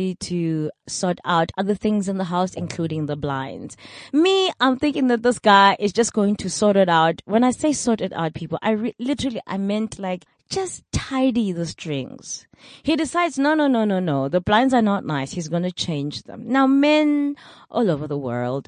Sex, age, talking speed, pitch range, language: female, 20-39, 200 wpm, 165-255 Hz, English